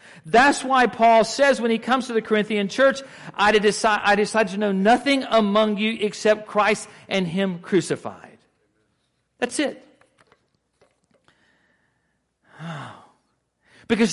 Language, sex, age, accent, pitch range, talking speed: English, male, 40-59, American, 180-225 Hz, 115 wpm